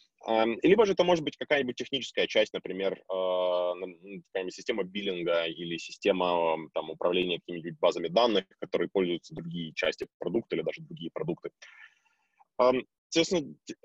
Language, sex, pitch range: Ukrainian, male, 90-140 Hz